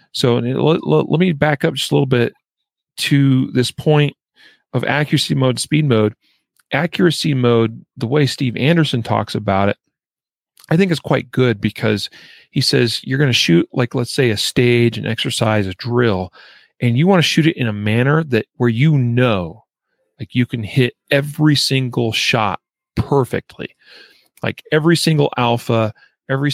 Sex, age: male, 40-59